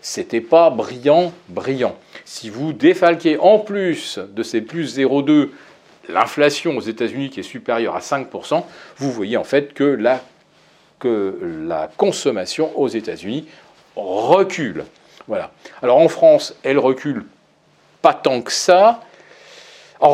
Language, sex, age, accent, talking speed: French, male, 40-59, French, 135 wpm